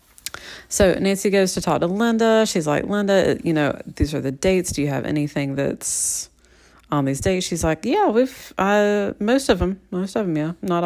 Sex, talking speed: female, 205 wpm